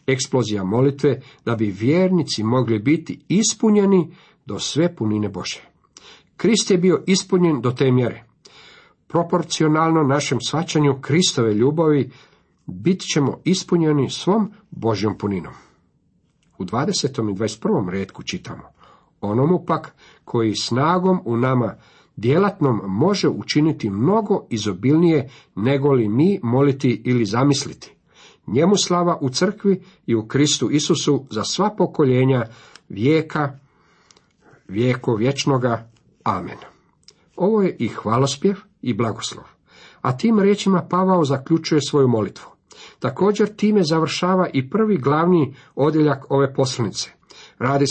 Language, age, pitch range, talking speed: Croatian, 50-69, 125-180 Hz, 115 wpm